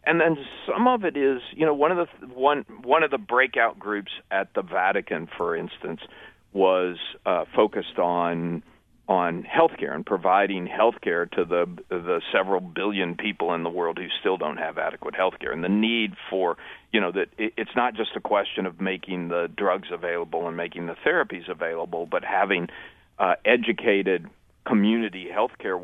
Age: 40-59